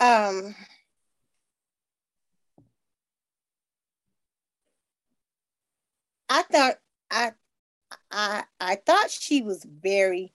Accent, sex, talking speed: American, female, 60 wpm